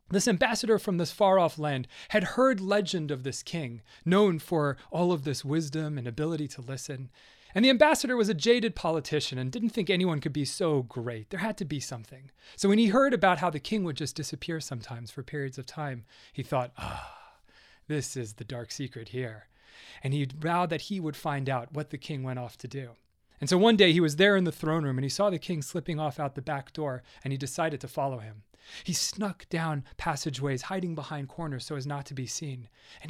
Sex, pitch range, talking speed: male, 135-175 Hz, 225 wpm